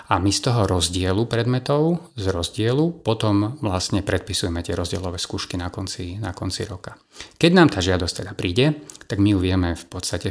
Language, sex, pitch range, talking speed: Slovak, male, 95-110 Hz, 180 wpm